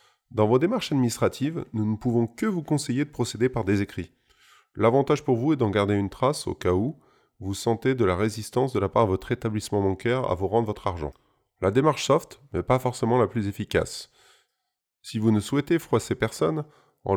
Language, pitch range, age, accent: French, 100-130 Hz, 20-39, French